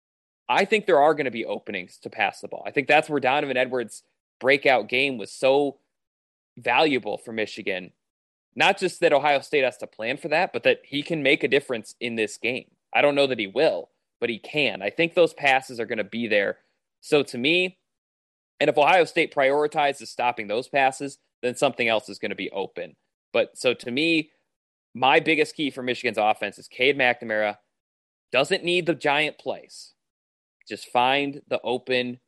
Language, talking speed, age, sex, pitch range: English, 195 wpm, 20-39, male, 110-145 Hz